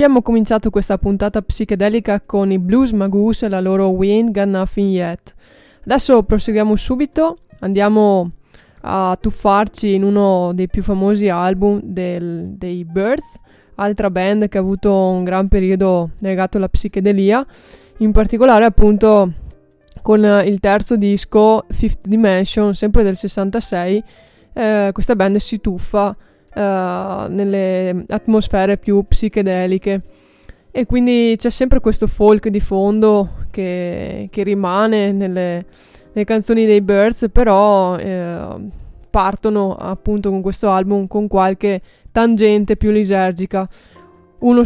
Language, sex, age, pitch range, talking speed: Italian, female, 20-39, 195-220 Hz, 125 wpm